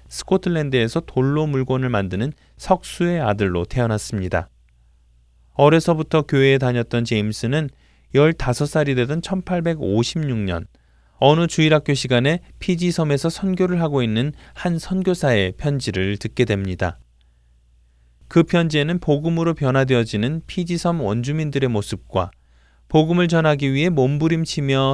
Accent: native